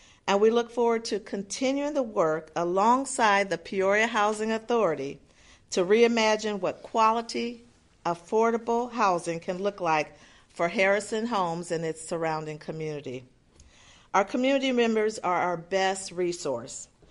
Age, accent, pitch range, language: 50-69, American, 165-220 Hz, English